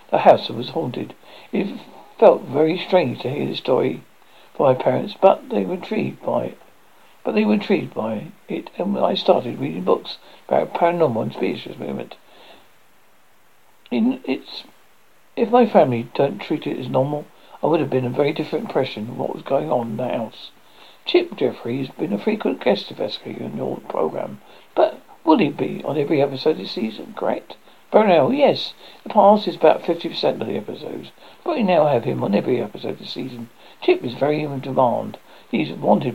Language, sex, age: English, male, 60-79